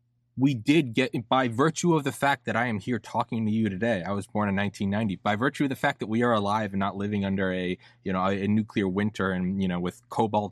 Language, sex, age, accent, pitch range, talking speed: English, male, 20-39, American, 100-120 Hz, 260 wpm